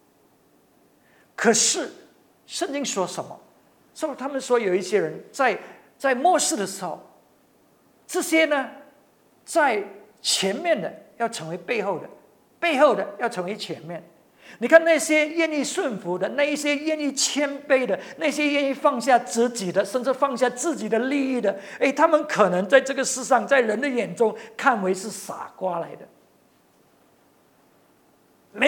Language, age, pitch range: English, 50-69, 220-310 Hz